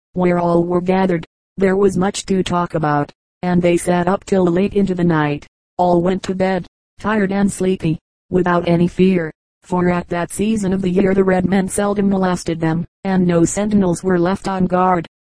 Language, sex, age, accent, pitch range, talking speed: English, female, 40-59, American, 175-195 Hz, 195 wpm